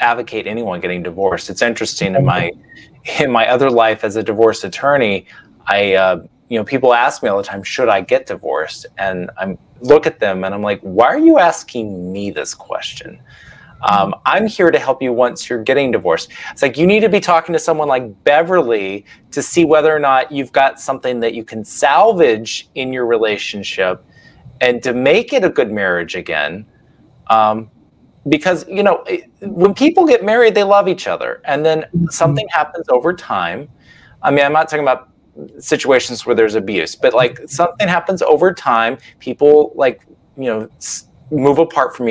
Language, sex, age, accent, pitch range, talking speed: English, male, 30-49, American, 115-165 Hz, 185 wpm